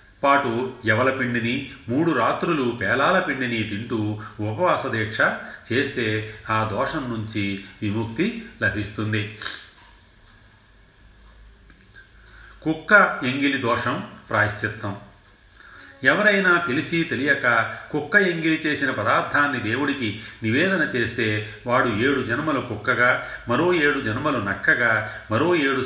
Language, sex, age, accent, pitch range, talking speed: Telugu, male, 30-49, native, 100-120 Hz, 90 wpm